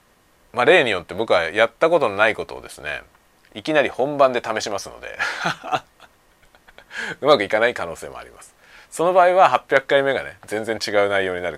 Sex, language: male, Japanese